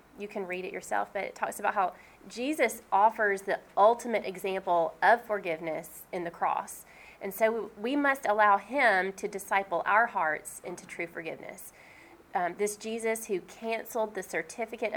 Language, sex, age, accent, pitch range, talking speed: English, female, 30-49, American, 180-220 Hz, 160 wpm